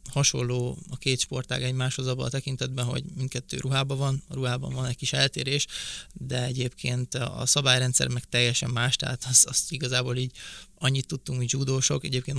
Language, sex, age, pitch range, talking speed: Hungarian, male, 20-39, 125-140 Hz, 170 wpm